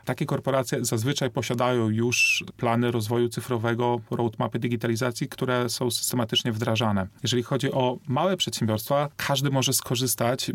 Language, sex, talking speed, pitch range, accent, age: Polish, male, 125 wpm, 120-145 Hz, native, 40-59